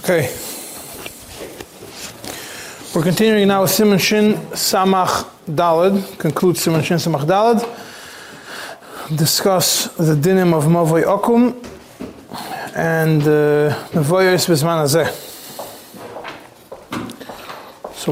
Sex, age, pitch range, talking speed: male, 30-49, 160-195 Hz, 85 wpm